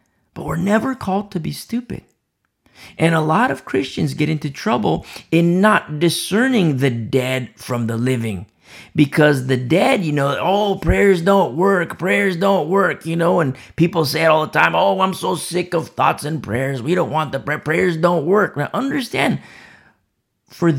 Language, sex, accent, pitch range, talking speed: English, male, American, 125-190 Hz, 180 wpm